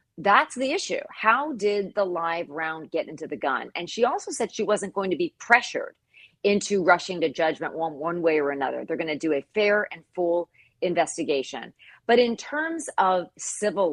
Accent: American